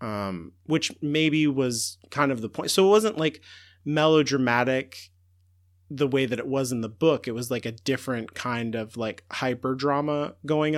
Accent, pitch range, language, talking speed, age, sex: American, 115-150 Hz, English, 175 wpm, 30-49, male